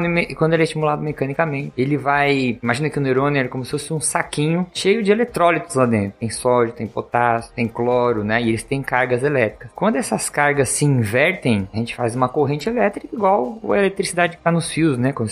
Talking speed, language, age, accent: 210 wpm, Portuguese, 20-39, Brazilian